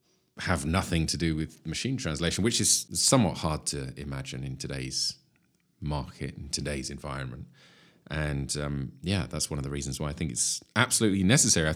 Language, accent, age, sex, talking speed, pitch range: English, British, 30-49, male, 175 wpm, 70-95 Hz